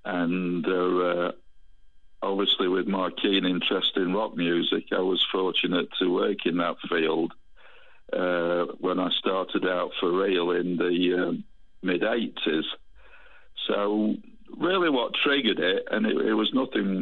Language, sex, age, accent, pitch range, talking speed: English, male, 60-79, British, 90-105 Hz, 145 wpm